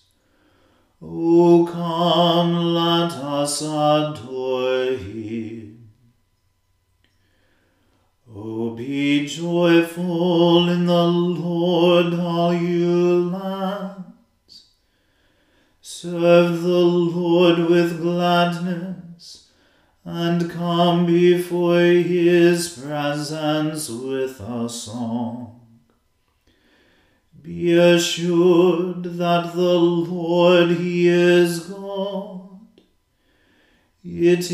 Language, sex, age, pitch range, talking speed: English, male, 40-59, 150-175 Hz, 65 wpm